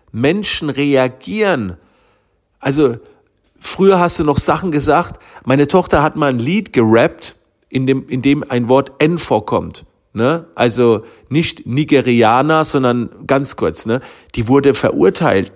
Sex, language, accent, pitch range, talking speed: male, German, German, 120-165 Hz, 135 wpm